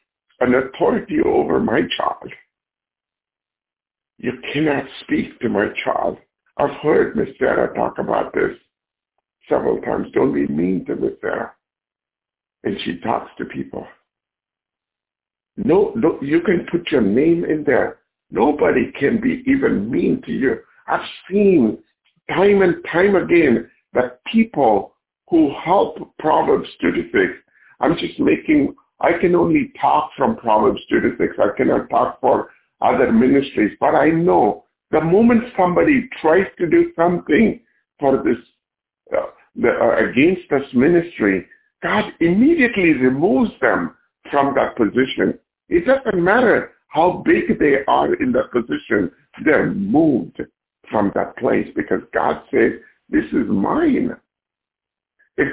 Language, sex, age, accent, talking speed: English, male, 60-79, American, 135 wpm